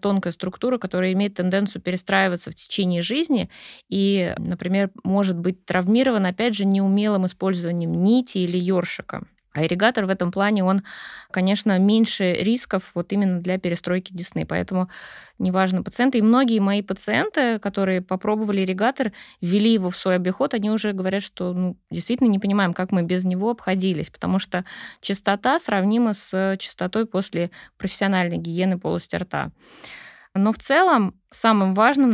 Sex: female